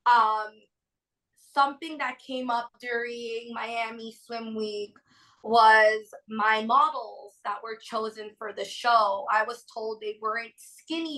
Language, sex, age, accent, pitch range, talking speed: English, female, 20-39, American, 220-270 Hz, 130 wpm